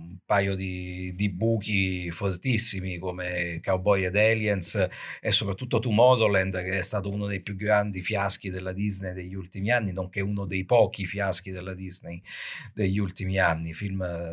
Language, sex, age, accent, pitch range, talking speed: Italian, male, 50-69, native, 95-115 Hz, 145 wpm